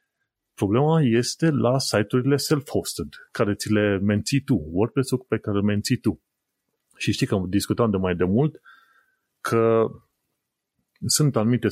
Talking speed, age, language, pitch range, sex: 135 wpm, 30-49, Romanian, 100-135 Hz, male